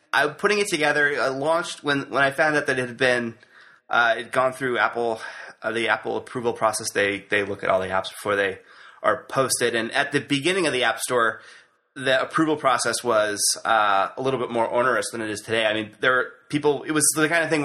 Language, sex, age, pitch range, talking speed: English, male, 20-39, 115-145 Hz, 235 wpm